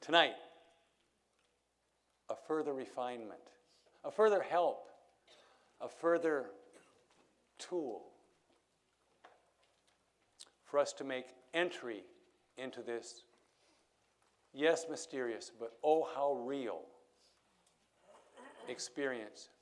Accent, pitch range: American, 115-150 Hz